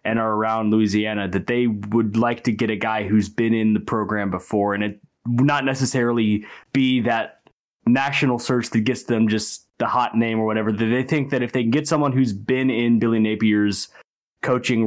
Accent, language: American, English